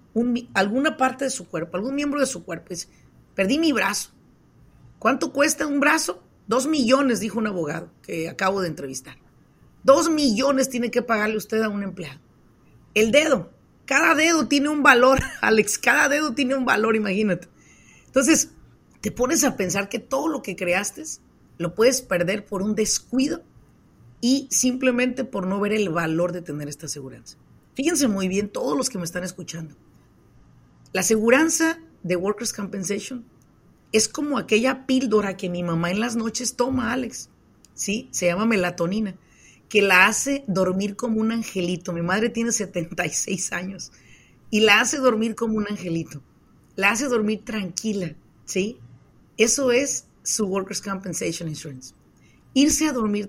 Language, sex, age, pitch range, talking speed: Spanish, female, 40-59, 180-255 Hz, 160 wpm